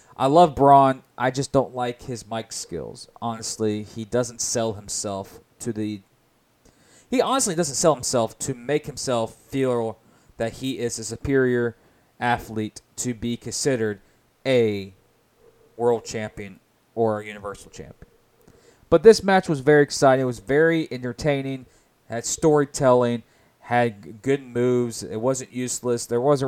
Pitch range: 115-130 Hz